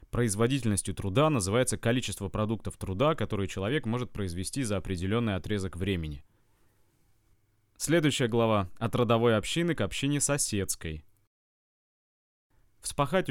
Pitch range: 95-125 Hz